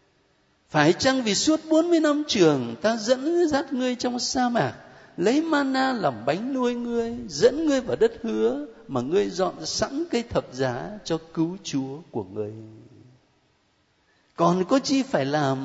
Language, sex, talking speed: Vietnamese, male, 160 wpm